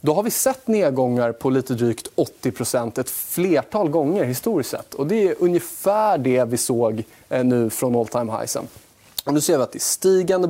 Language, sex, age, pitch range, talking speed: Swedish, male, 20-39, 125-160 Hz, 190 wpm